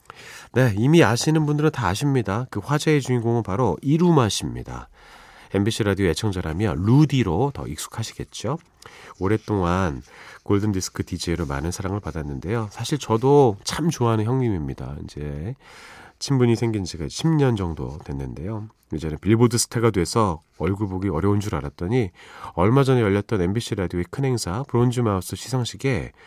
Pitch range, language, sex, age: 85-125 Hz, Korean, male, 40-59